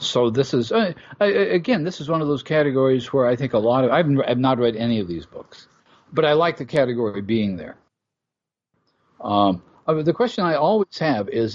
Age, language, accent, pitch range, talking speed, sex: 50-69, English, American, 110-155 Hz, 210 wpm, male